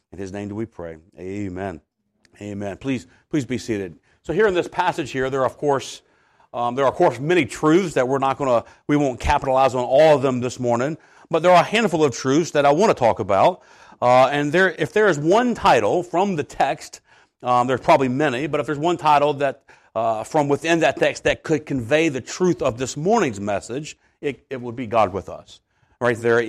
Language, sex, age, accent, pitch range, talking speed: English, male, 40-59, American, 120-155 Hz, 230 wpm